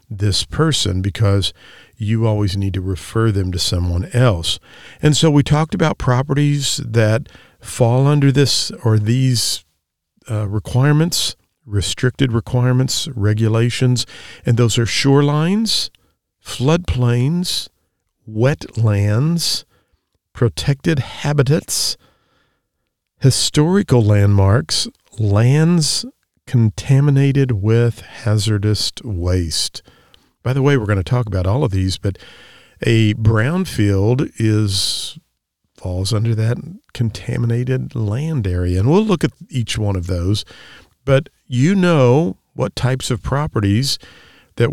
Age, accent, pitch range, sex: 50-69, American, 100-135 Hz, male